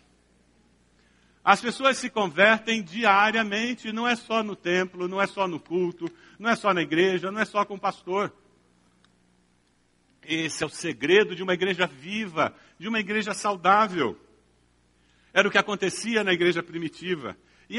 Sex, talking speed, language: male, 155 wpm, Portuguese